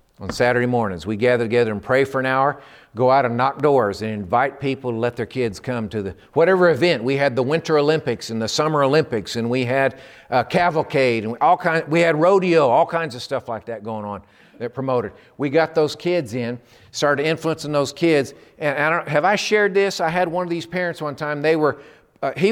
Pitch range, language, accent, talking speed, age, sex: 130-175 Hz, English, American, 225 wpm, 50-69, male